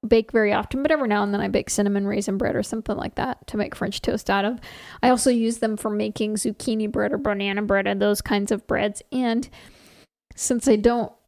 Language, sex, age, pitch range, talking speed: English, female, 10-29, 210-240 Hz, 230 wpm